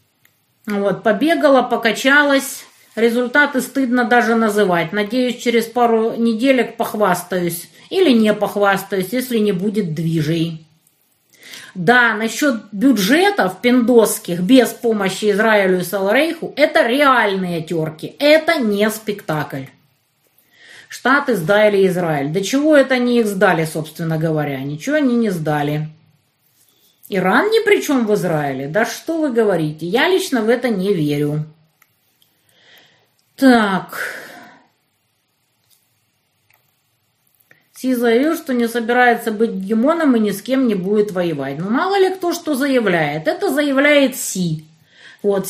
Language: Russian